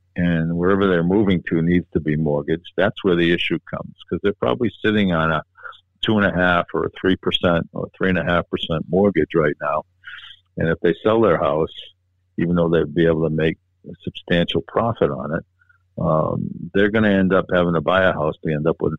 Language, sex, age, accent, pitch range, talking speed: English, male, 50-69, American, 80-90 Hz, 220 wpm